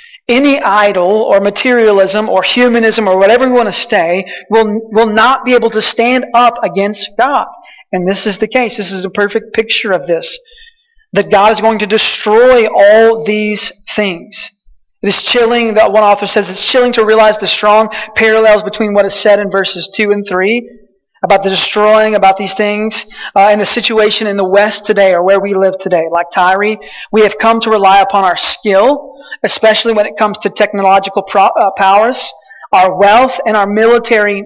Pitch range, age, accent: 195-225 Hz, 20-39, American